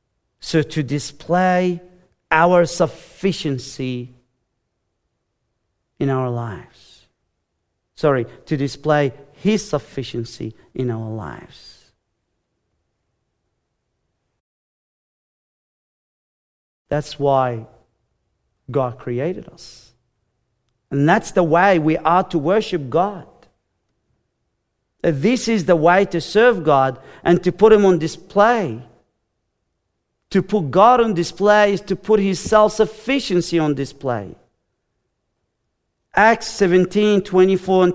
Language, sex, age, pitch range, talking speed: English, male, 40-59, 120-195 Hz, 95 wpm